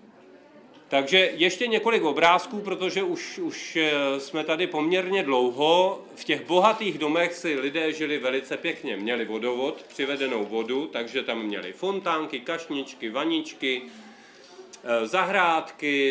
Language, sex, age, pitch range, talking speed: Czech, male, 40-59, 130-170 Hz, 115 wpm